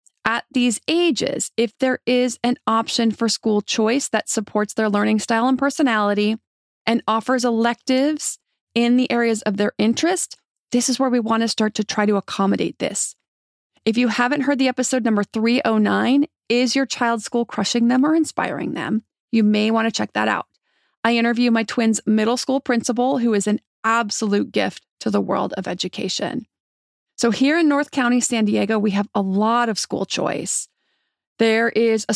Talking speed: 180 wpm